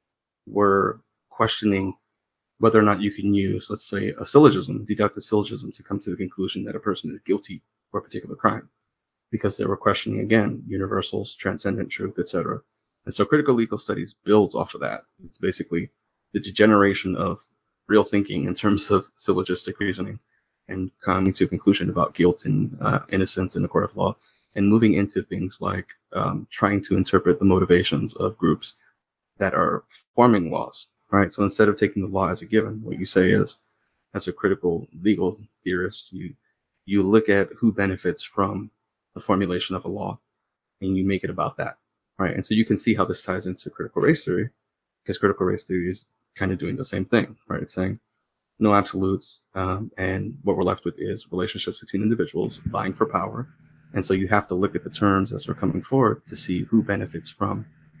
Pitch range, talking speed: 95-110 Hz, 195 wpm